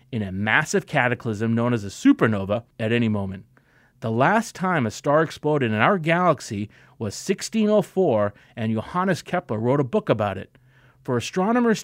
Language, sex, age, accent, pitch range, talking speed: English, male, 30-49, American, 115-165 Hz, 160 wpm